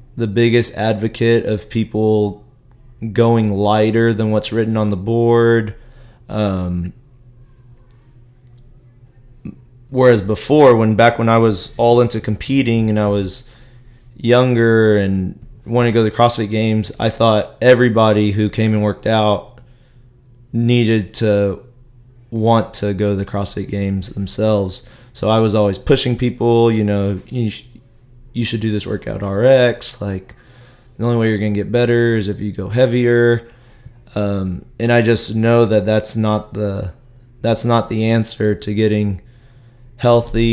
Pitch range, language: 105-120 Hz, English